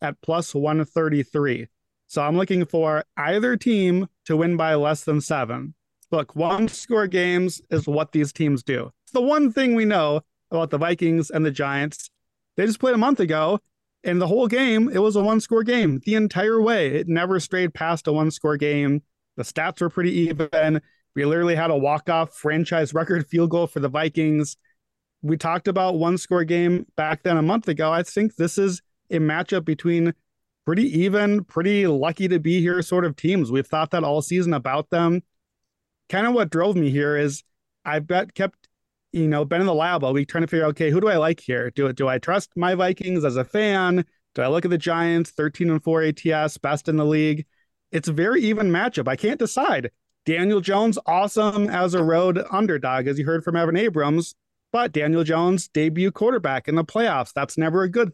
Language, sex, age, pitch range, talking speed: English, male, 30-49, 150-185 Hz, 200 wpm